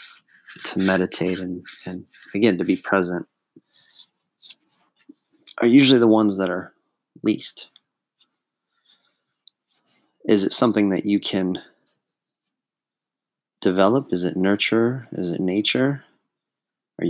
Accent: American